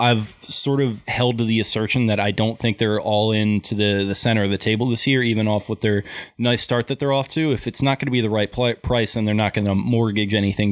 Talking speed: 275 wpm